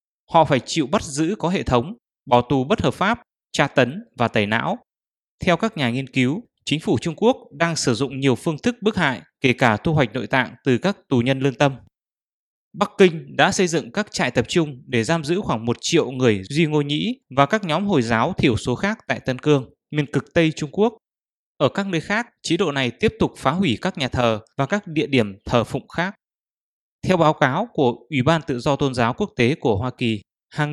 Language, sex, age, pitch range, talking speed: English, male, 20-39, 125-165 Hz, 230 wpm